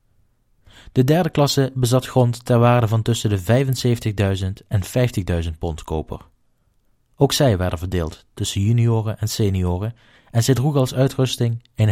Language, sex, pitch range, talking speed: Dutch, male, 100-130 Hz, 145 wpm